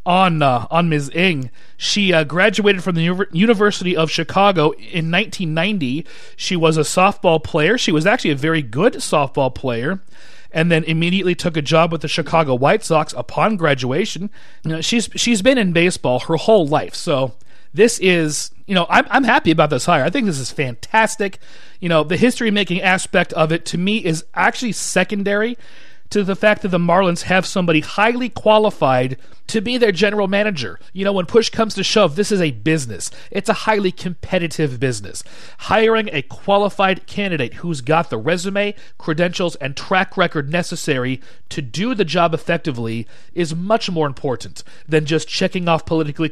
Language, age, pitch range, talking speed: English, 40-59, 150-200 Hz, 180 wpm